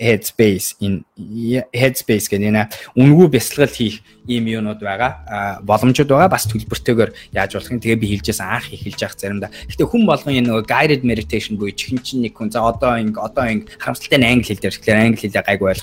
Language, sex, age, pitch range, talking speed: English, male, 20-39, 95-120 Hz, 150 wpm